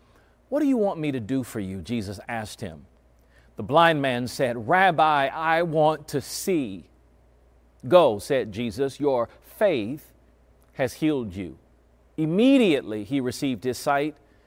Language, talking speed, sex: English, 140 wpm, male